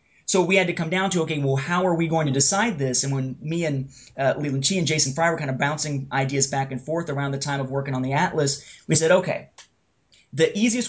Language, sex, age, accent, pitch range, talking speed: English, male, 30-49, American, 140-170 Hz, 260 wpm